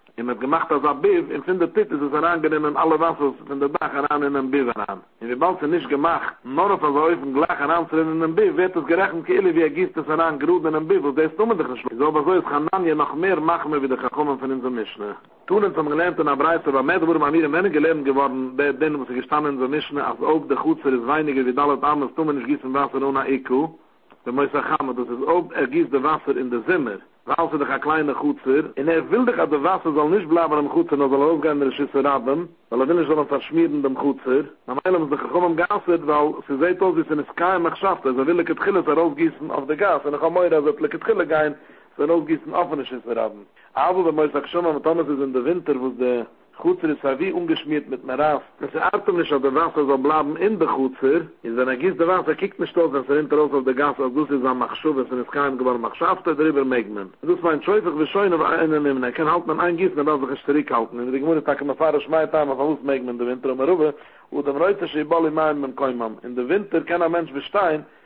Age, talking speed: 50-69, 90 wpm